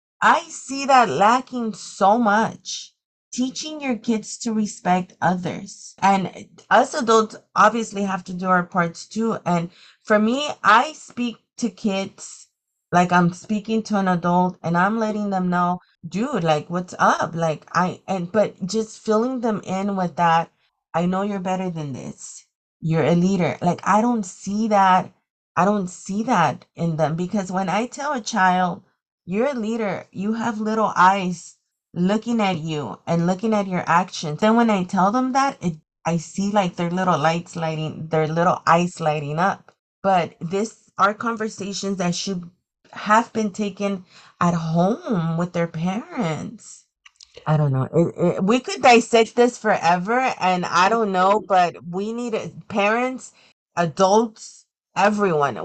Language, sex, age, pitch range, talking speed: English, female, 30-49, 175-220 Hz, 155 wpm